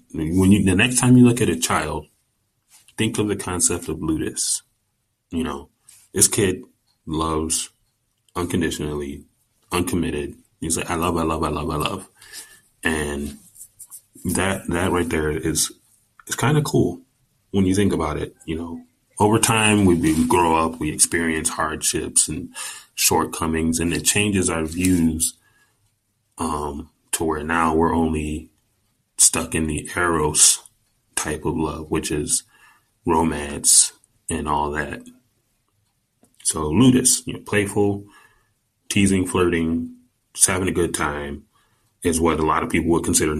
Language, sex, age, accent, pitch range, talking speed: English, male, 20-39, American, 80-105 Hz, 140 wpm